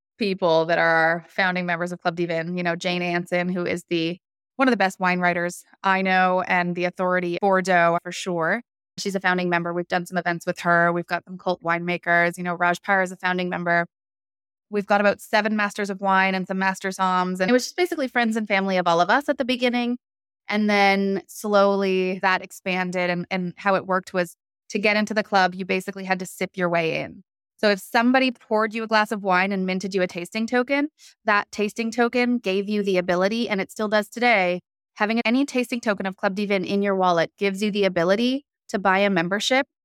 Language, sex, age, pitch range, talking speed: English, female, 20-39, 175-215 Hz, 220 wpm